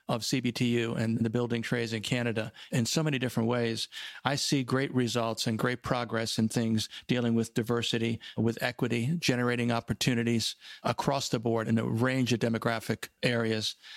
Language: English